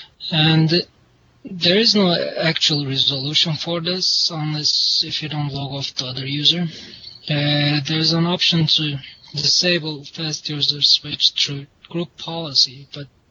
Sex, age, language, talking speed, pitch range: male, 20-39, English, 140 wpm, 140-160 Hz